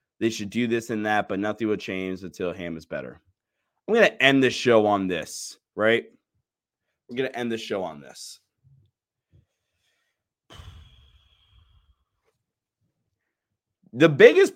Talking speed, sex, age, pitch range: 140 wpm, male, 20-39, 105-145 Hz